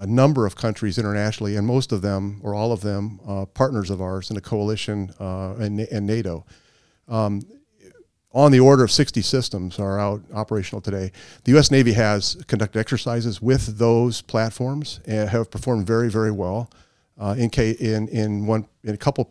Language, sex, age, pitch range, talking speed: English, male, 40-59, 100-120 Hz, 185 wpm